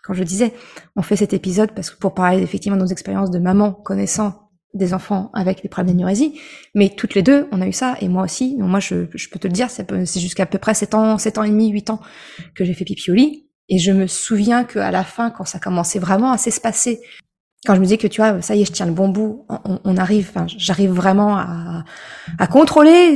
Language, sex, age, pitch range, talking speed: French, female, 20-39, 195-275 Hz, 255 wpm